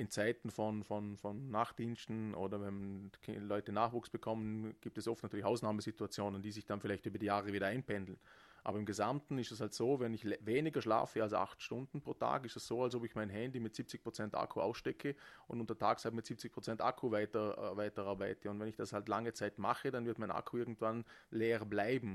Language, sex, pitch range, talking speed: German, male, 105-115 Hz, 215 wpm